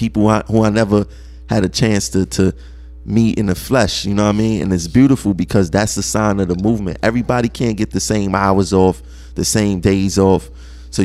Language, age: English, 20-39